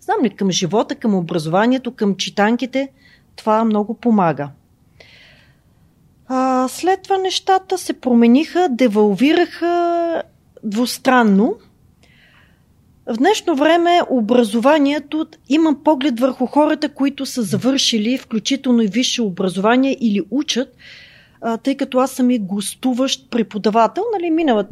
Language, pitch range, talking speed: Bulgarian, 200-265 Hz, 100 wpm